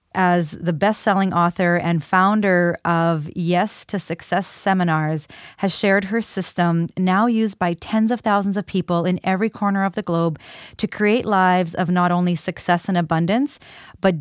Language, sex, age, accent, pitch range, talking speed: English, female, 30-49, American, 175-205 Hz, 165 wpm